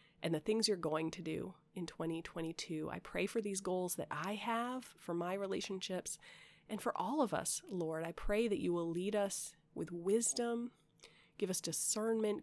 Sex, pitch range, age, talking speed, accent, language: female, 160-205 Hz, 30-49, 185 wpm, American, English